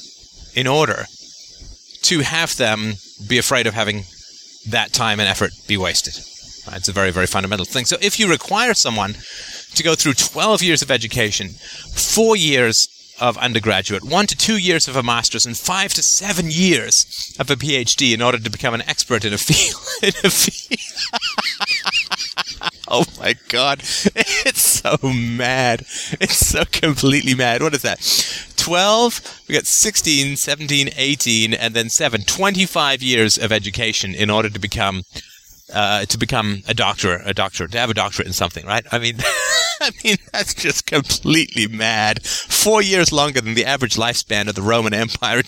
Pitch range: 105-155 Hz